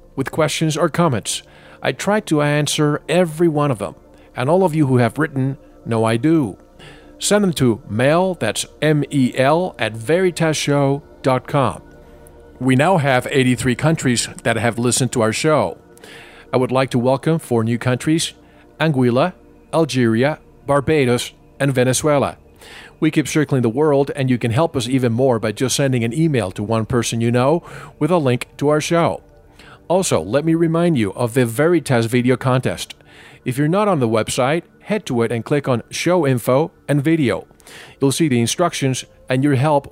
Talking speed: 175 wpm